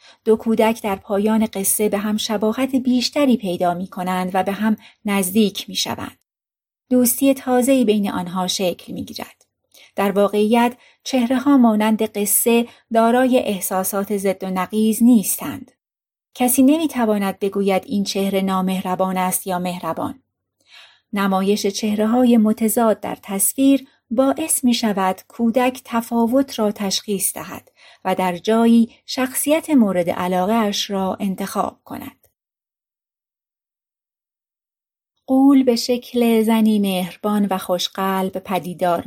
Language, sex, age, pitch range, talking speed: Persian, female, 40-59, 195-240 Hz, 120 wpm